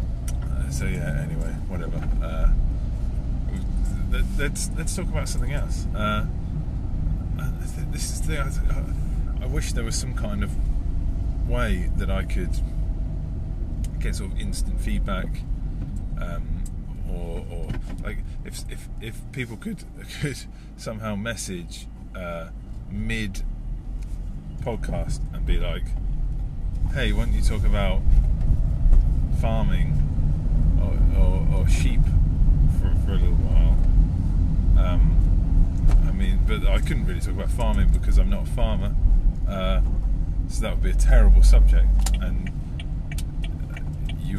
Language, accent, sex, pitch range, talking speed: English, British, male, 75-95 Hz, 125 wpm